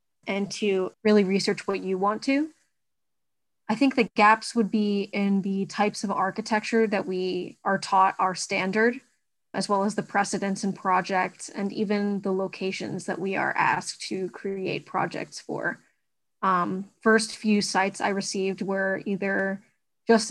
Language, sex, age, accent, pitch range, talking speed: English, female, 20-39, American, 190-215 Hz, 155 wpm